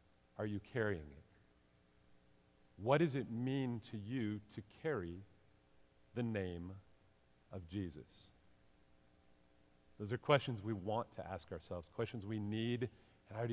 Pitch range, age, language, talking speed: 80-120 Hz, 40-59, English, 135 wpm